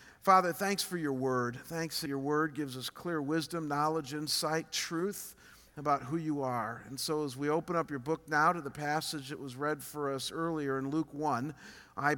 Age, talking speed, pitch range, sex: 50-69, 205 wpm, 135-190 Hz, male